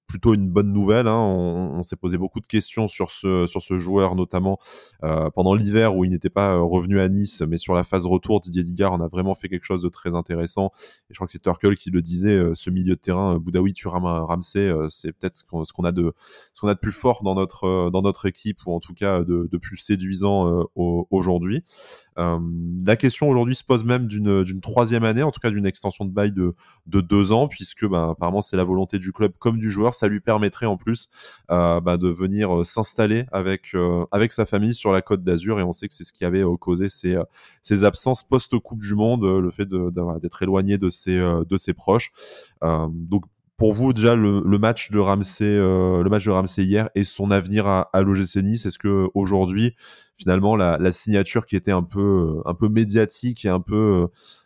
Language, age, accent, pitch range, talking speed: French, 20-39, French, 90-105 Hz, 235 wpm